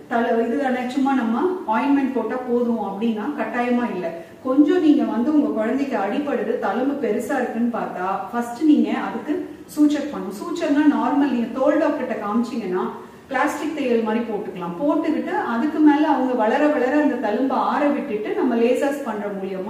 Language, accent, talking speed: Tamil, native, 60 wpm